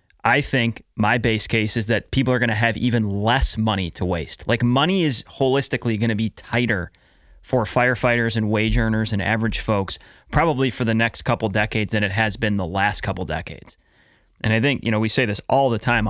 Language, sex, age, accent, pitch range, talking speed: English, male, 30-49, American, 100-125 Hz, 215 wpm